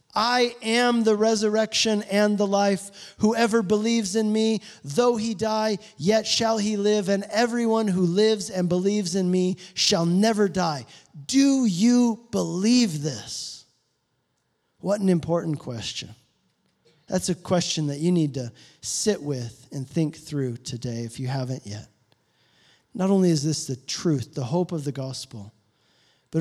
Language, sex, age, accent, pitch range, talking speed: English, male, 40-59, American, 150-210 Hz, 150 wpm